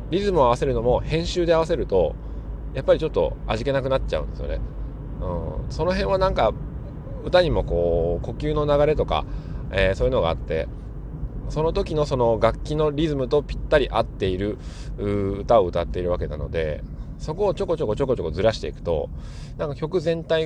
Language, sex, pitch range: Japanese, male, 85-135 Hz